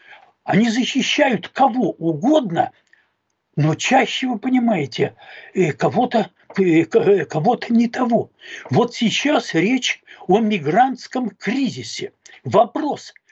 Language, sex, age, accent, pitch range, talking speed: Russian, male, 60-79, native, 205-270 Hz, 80 wpm